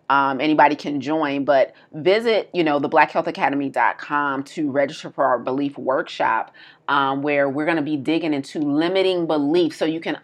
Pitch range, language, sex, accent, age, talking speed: 135-170 Hz, English, female, American, 30-49, 170 wpm